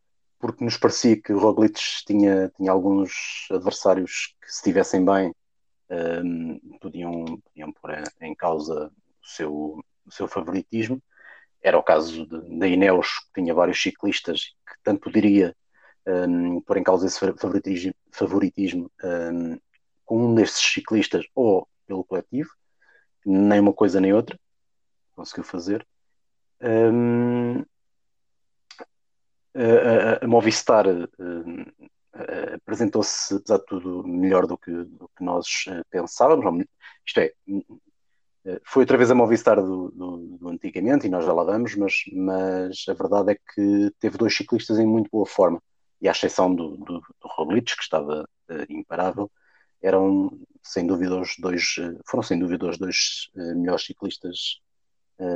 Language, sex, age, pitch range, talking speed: Portuguese, male, 30-49, 90-115 Hz, 150 wpm